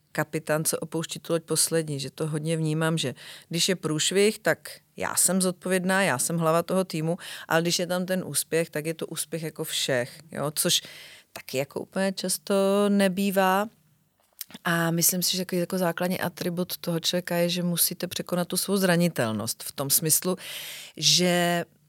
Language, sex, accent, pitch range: Czech, female, native, 150-190 Hz